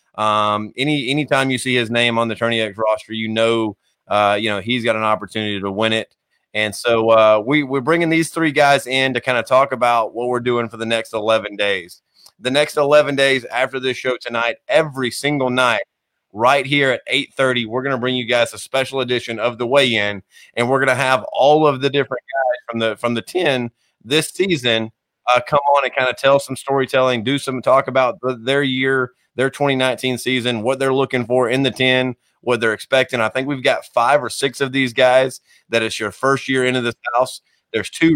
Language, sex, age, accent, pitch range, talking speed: English, male, 30-49, American, 115-140 Hz, 225 wpm